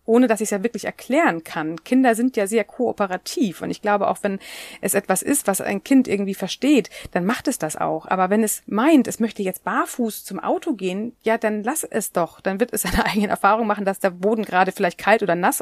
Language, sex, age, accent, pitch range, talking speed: German, female, 30-49, German, 175-225 Hz, 240 wpm